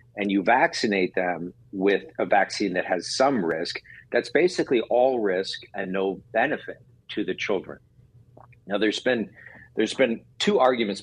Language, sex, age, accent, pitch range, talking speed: English, male, 50-69, American, 90-115 Hz, 145 wpm